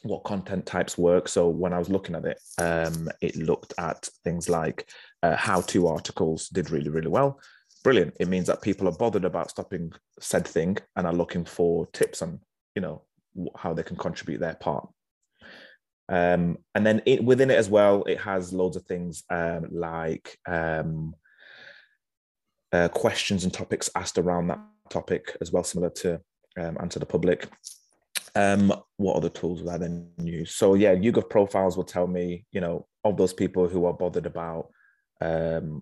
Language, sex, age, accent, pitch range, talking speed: English, male, 20-39, British, 85-100 Hz, 180 wpm